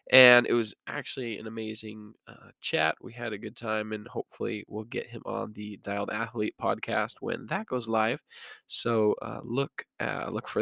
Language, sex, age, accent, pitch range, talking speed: English, male, 20-39, American, 105-120 Hz, 185 wpm